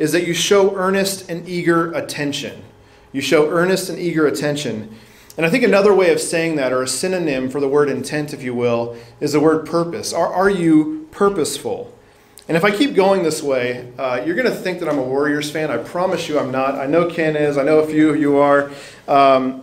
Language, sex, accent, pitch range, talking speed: English, male, American, 135-180 Hz, 225 wpm